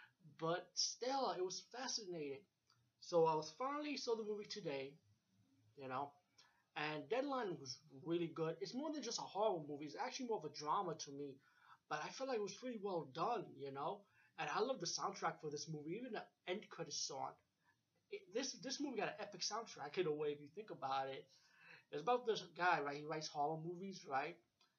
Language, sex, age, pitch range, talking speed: English, male, 30-49, 145-210 Hz, 205 wpm